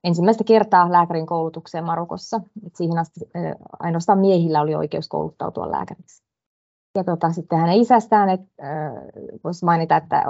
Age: 20-39